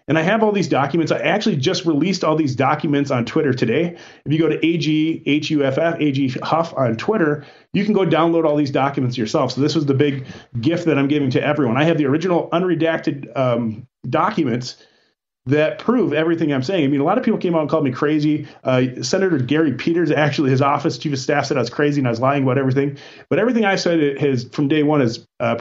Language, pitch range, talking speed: English, 135-165 Hz, 225 wpm